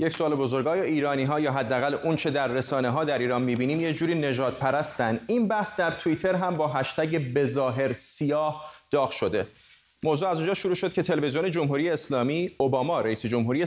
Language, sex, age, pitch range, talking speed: Persian, male, 30-49, 125-155 Hz, 180 wpm